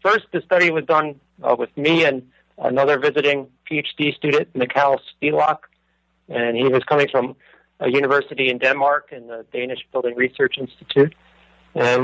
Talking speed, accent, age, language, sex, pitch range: 155 wpm, American, 40-59, English, male, 120-145 Hz